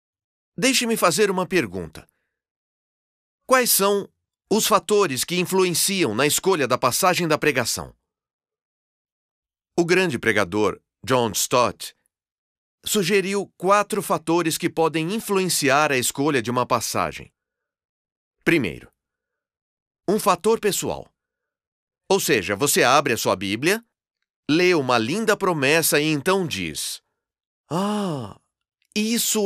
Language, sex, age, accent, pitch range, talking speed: Portuguese, male, 40-59, Brazilian, 140-200 Hz, 110 wpm